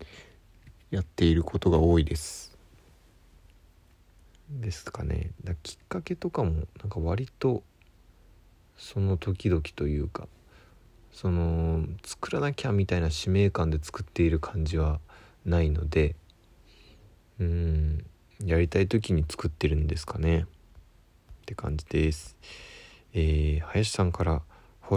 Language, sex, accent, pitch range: Japanese, male, native, 80-95 Hz